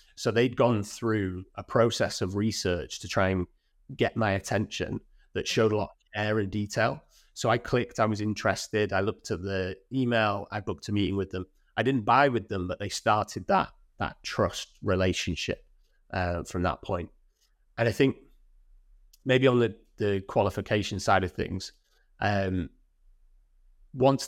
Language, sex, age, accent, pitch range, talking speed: English, male, 30-49, British, 95-110 Hz, 170 wpm